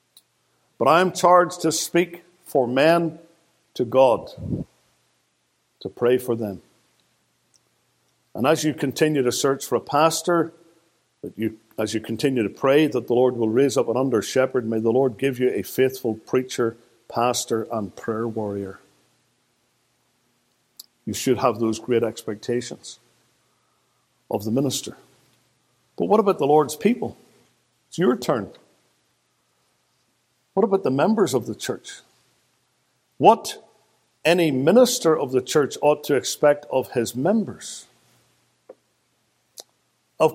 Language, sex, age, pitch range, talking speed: English, male, 60-79, 120-160 Hz, 130 wpm